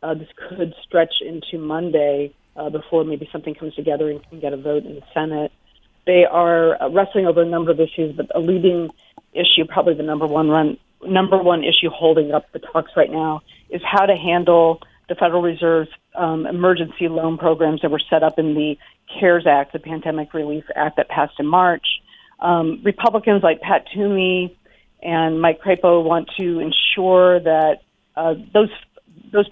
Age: 40-59